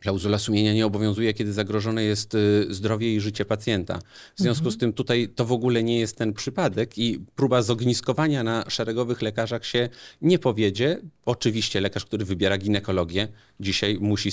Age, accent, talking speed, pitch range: 40-59, native, 165 wpm, 100-120 Hz